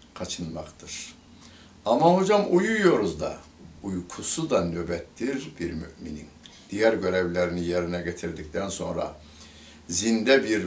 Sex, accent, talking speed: male, native, 95 wpm